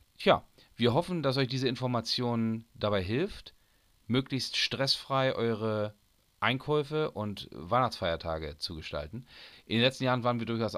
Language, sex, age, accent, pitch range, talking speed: German, male, 40-59, German, 100-125 Hz, 135 wpm